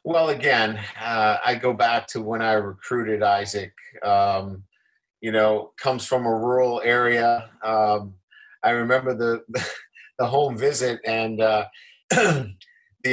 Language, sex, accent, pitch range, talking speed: English, male, American, 110-145 Hz, 135 wpm